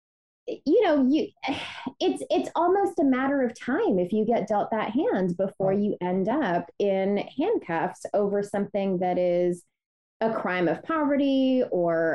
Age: 20-39